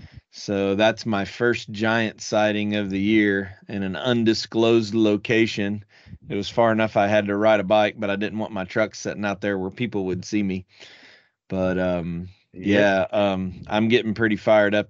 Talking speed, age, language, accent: 185 wpm, 30-49, English, American